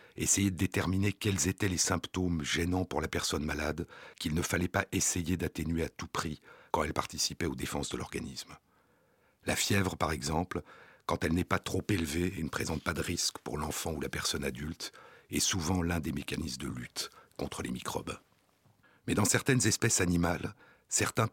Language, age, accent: French, 60-79, French